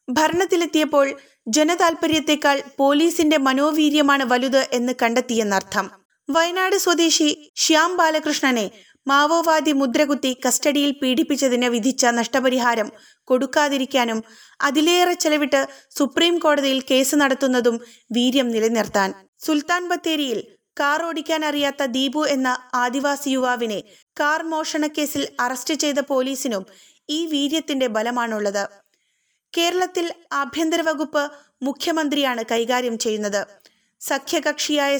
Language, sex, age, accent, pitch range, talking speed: Malayalam, female, 20-39, native, 255-310 Hz, 85 wpm